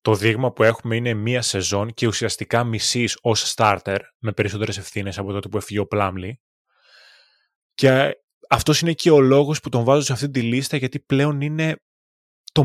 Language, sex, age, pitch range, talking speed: Greek, male, 20-39, 105-140 Hz, 180 wpm